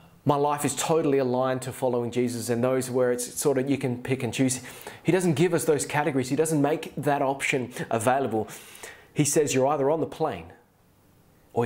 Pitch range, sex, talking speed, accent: 130-160 Hz, male, 200 wpm, Australian